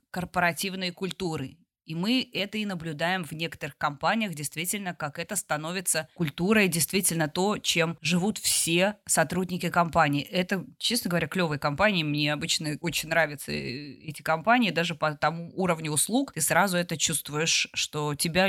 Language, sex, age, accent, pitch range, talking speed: Russian, female, 20-39, native, 155-195 Hz, 145 wpm